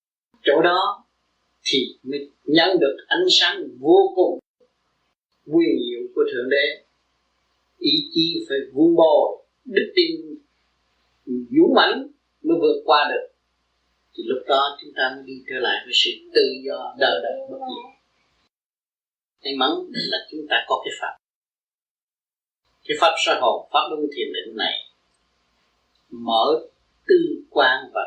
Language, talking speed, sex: Vietnamese, 140 wpm, male